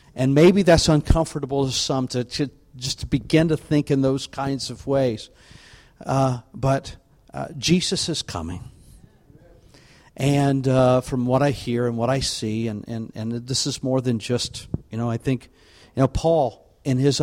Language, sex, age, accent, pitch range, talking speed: English, male, 50-69, American, 120-140 Hz, 180 wpm